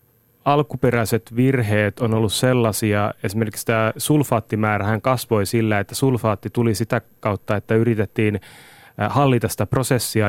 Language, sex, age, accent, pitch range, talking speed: Finnish, male, 30-49, native, 110-125 Hz, 120 wpm